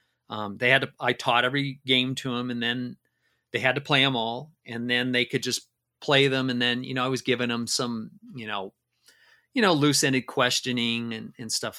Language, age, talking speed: English, 40-59, 225 wpm